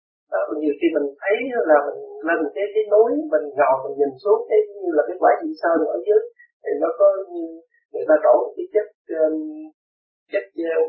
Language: Vietnamese